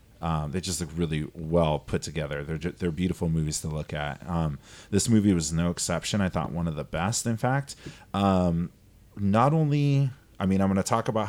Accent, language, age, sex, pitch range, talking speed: American, English, 30-49, male, 80-100 Hz, 215 wpm